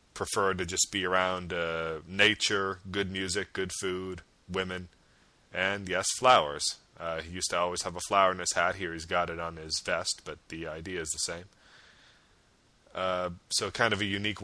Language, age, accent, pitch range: English, 30-49, American, 80-95 Hz